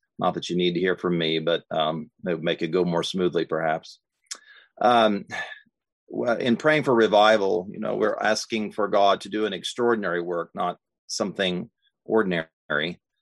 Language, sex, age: English, male, 40-59